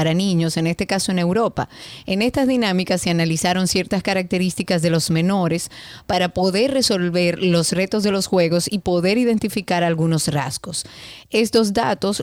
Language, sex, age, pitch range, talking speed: Spanish, female, 30-49, 165-195 Hz, 155 wpm